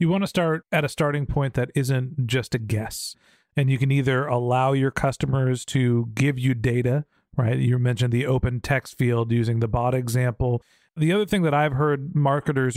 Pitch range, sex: 125-150 Hz, male